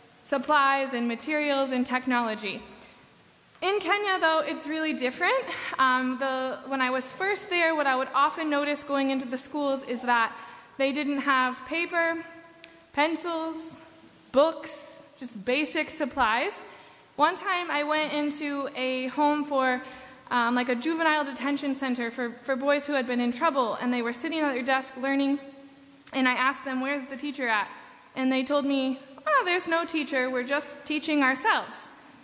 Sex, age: female, 20-39